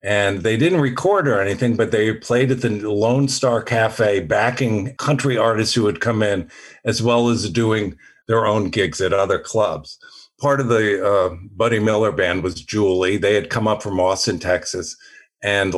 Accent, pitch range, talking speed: American, 100-135 Hz, 185 wpm